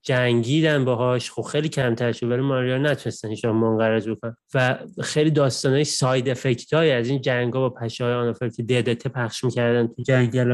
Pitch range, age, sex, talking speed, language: 125-150 Hz, 30-49, male, 170 wpm, Persian